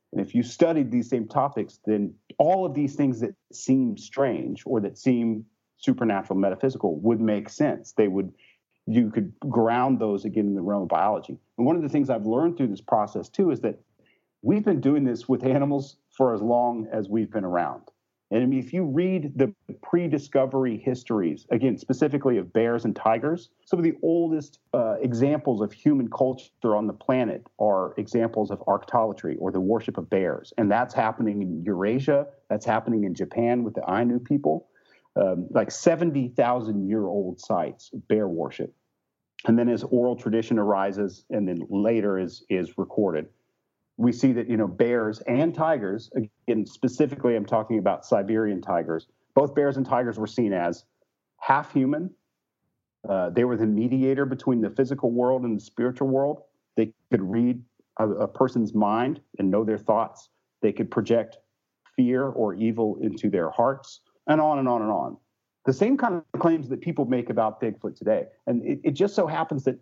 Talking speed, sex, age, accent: 180 wpm, male, 40-59, American